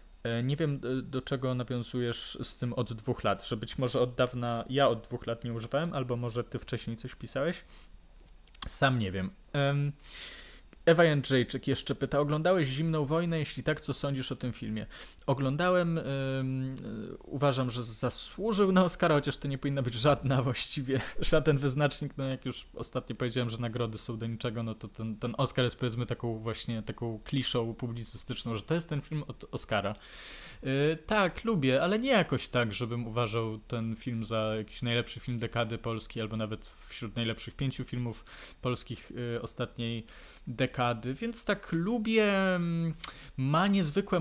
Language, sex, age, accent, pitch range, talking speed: Polish, male, 20-39, native, 115-145 Hz, 165 wpm